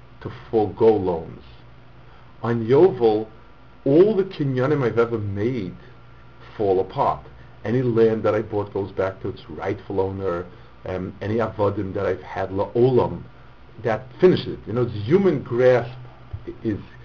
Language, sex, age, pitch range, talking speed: English, male, 50-69, 95-125 Hz, 150 wpm